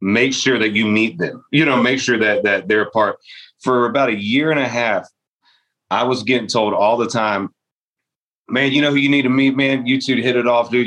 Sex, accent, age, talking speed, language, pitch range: male, American, 30-49, 245 wpm, English, 110-135 Hz